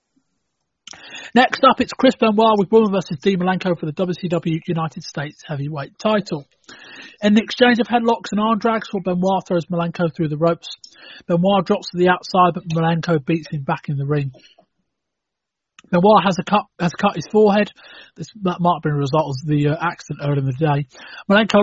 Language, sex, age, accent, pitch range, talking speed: English, male, 30-49, British, 160-210 Hz, 180 wpm